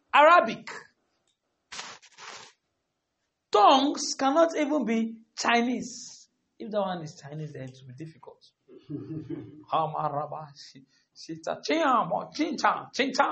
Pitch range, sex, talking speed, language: 175-270 Hz, male, 85 wpm, English